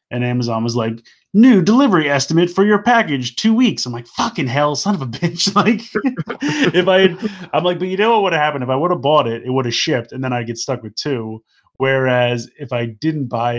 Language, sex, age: English, male, 20-39